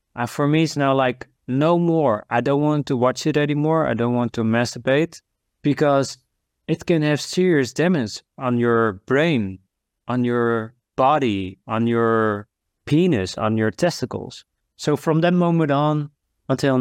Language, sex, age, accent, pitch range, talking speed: English, male, 20-39, Dutch, 115-145 Hz, 155 wpm